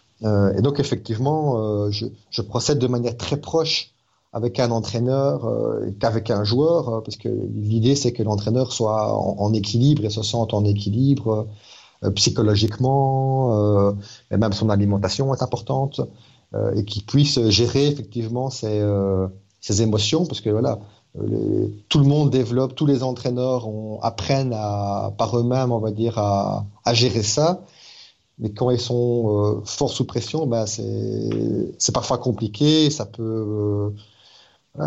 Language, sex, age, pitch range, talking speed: French, male, 30-49, 105-125 Hz, 150 wpm